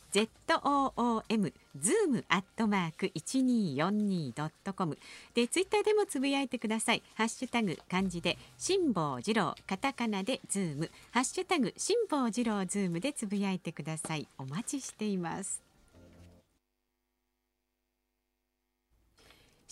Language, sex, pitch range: Japanese, female, 165-250 Hz